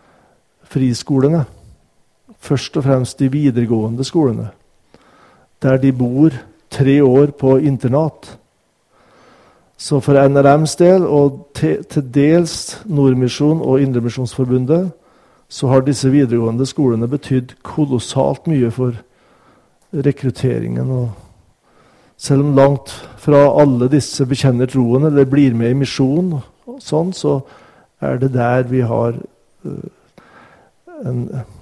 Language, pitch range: Danish, 120-145 Hz